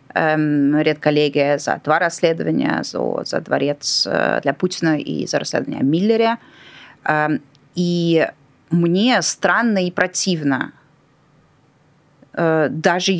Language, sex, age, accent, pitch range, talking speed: Russian, female, 20-39, native, 155-190 Hz, 85 wpm